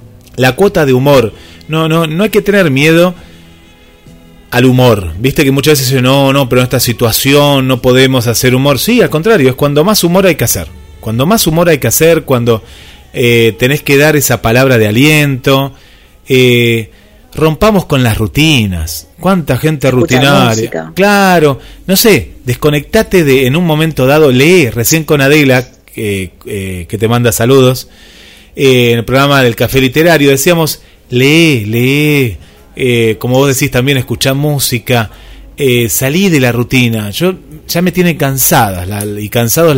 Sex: male